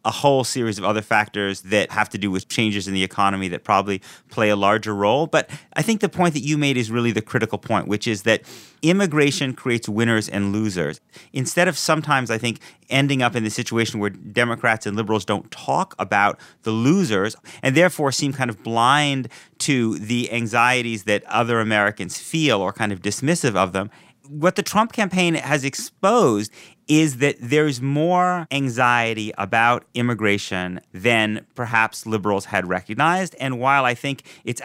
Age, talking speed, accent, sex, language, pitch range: 30-49, 180 wpm, American, male, English, 105-140 Hz